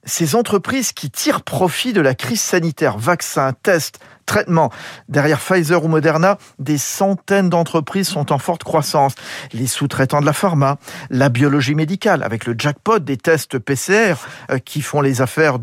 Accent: French